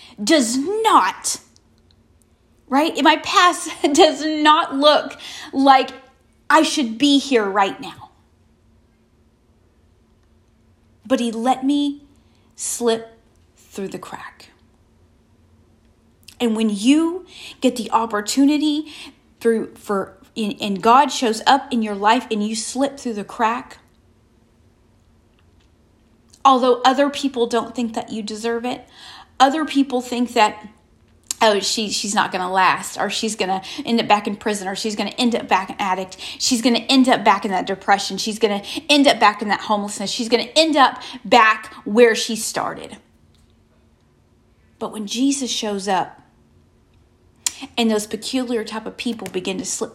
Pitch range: 210-270 Hz